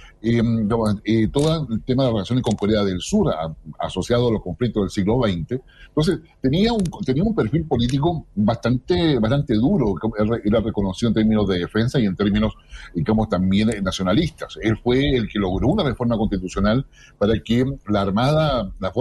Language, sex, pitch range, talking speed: Spanish, male, 110-150 Hz, 170 wpm